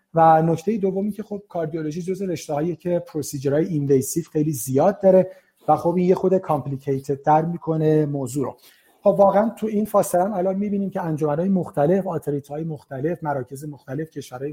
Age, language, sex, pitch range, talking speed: 30-49, Persian, male, 150-190 Hz, 160 wpm